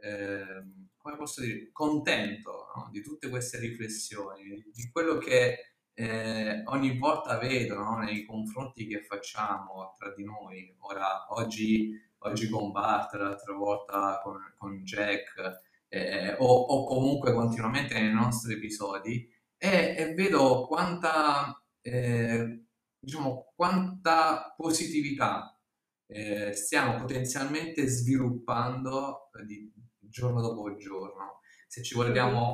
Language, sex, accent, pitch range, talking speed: Italian, male, native, 105-130 Hz, 115 wpm